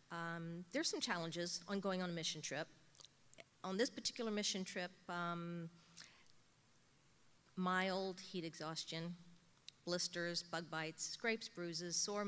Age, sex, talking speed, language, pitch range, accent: 50-69, female, 120 wpm, English, 165-185 Hz, American